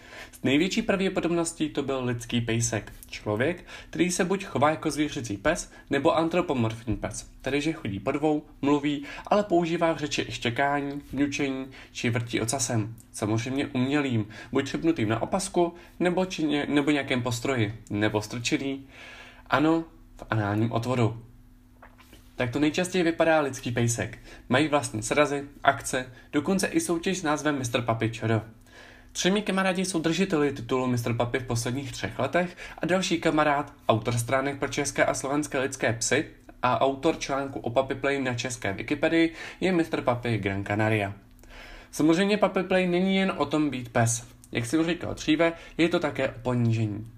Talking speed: 155 wpm